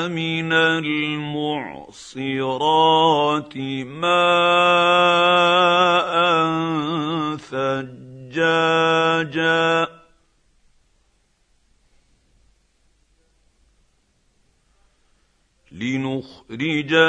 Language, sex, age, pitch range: Arabic, male, 50-69, 150-195 Hz